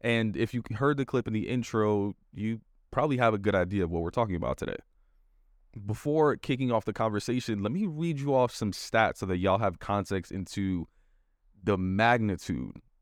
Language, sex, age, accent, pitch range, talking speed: English, male, 20-39, American, 95-130 Hz, 190 wpm